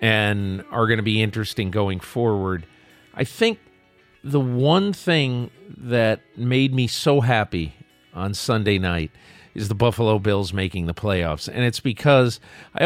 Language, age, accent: English, 50-69, American